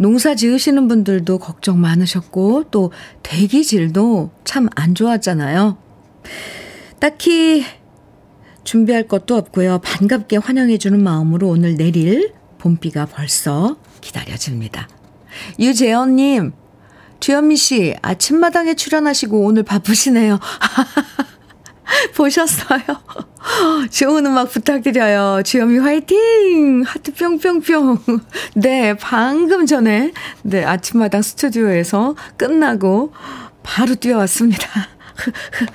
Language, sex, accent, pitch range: Korean, female, native, 195-280 Hz